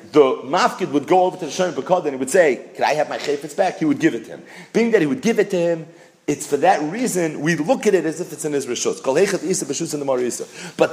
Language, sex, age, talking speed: English, male, 40-59, 255 wpm